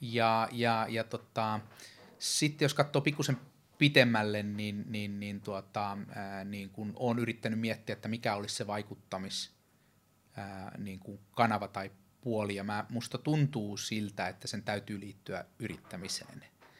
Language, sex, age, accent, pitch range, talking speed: Finnish, male, 30-49, native, 95-115 Hz, 130 wpm